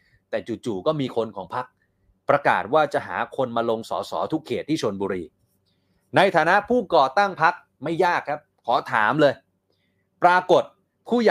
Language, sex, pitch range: Thai, male, 110-175 Hz